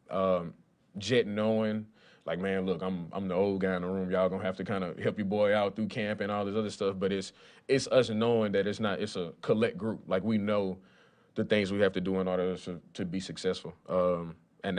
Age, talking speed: 20-39, 240 wpm